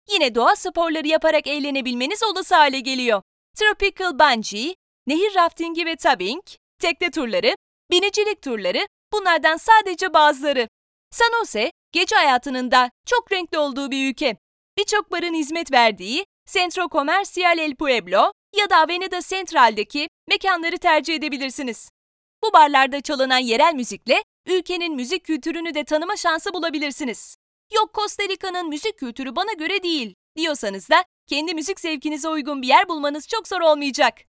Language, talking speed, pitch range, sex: Turkish, 135 wpm, 285-370 Hz, female